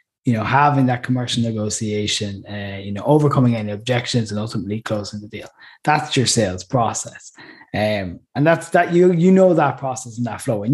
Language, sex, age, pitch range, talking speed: English, male, 20-39, 110-135 Hz, 190 wpm